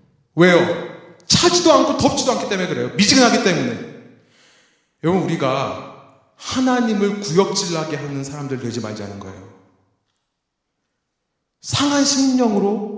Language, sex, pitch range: Korean, male, 120-200 Hz